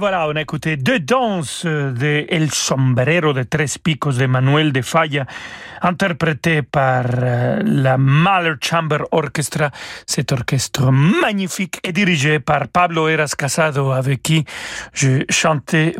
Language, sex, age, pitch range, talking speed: French, male, 40-59, 140-180 Hz, 130 wpm